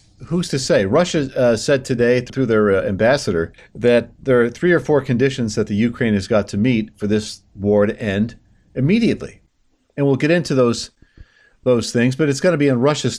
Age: 50-69